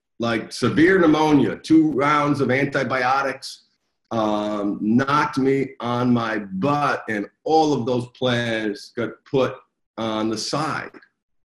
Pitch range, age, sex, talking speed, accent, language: 115-145 Hz, 50-69, male, 120 wpm, American, English